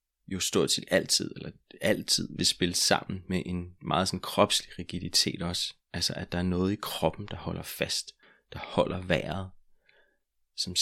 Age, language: 30-49, Danish